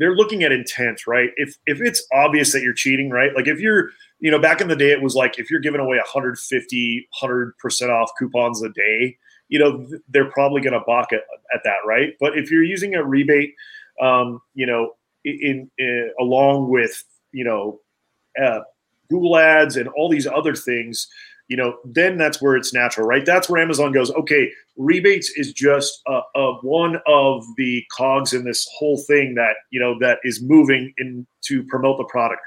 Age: 30-49